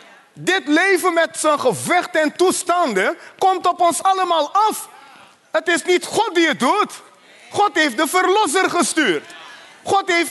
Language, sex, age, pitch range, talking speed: Dutch, male, 30-49, 265-355 Hz, 150 wpm